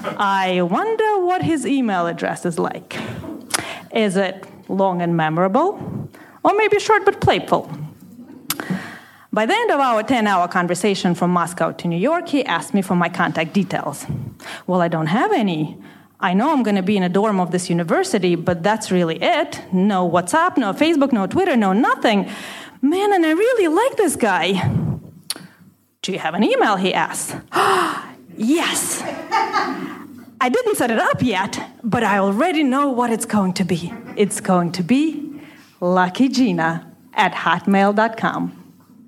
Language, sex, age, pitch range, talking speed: English, female, 30-49, 180-290 Hz, 160 wpm